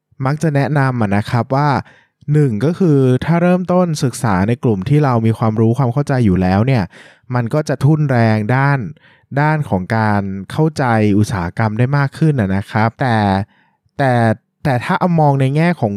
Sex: male